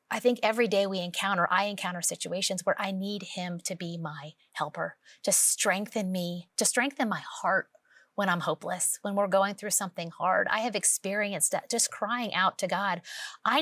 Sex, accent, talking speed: female, American, 190 wpm